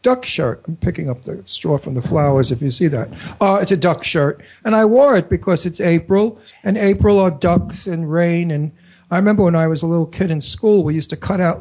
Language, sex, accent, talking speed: English, male, American, 250 wpm